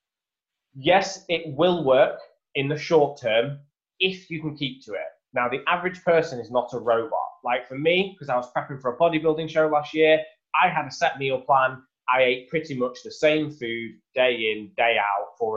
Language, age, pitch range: English, 20-39, 120-160 Hz